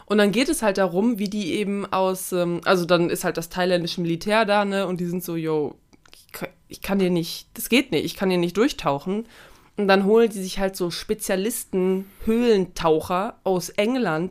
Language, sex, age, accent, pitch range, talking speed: German, female, 20-39, German, 175-215 Hz, 195 wpm